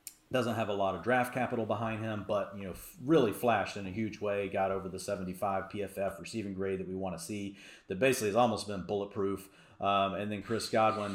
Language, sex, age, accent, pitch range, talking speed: English, male, 40-59, American, 100-125 Hz, 220 wpm